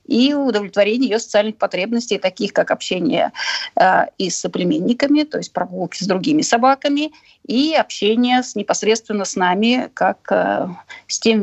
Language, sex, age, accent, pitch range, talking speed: Russian, female, 30-49, native, 205-270 Hz, 140 wpm